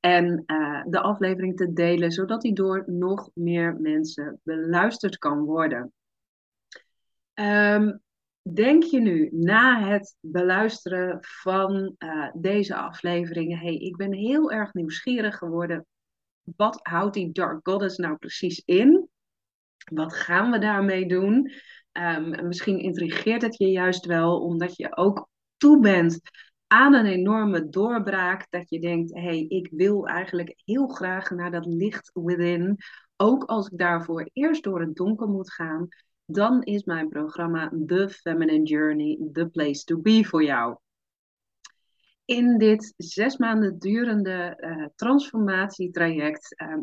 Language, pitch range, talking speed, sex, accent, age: Dutch, 165-205 Hz, 135 wpm, female, Dutch, 30-49